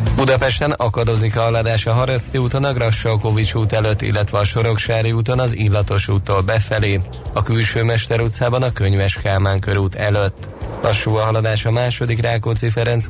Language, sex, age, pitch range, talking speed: Hungarian, male, 20-39, 100-115 Hz, 155 wpm